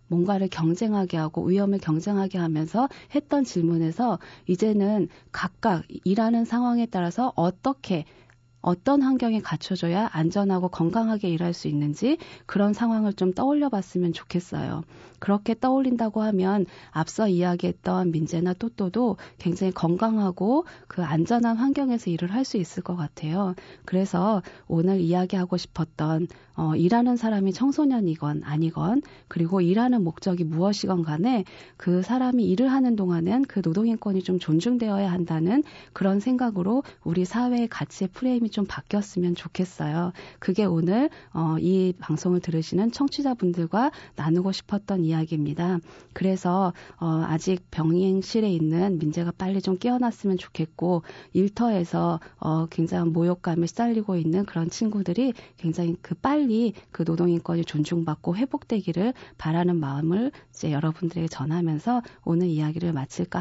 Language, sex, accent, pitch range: Korean, female, native, 170-220 Hz